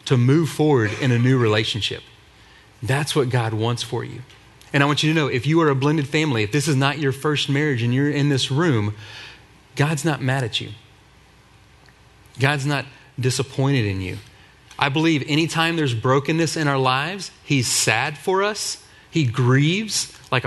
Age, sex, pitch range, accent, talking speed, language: 30-49, male, 120-145 Hz, American, 180 wpm, English